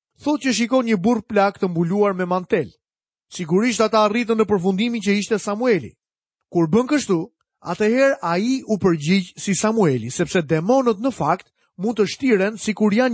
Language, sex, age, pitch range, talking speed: Malay, male, 30-49, 175-230 Hz, 175 wpm